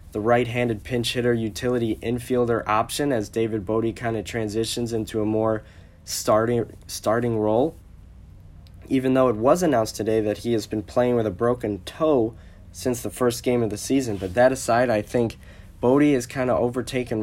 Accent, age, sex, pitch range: American, 20-39, male, 105-120 Hz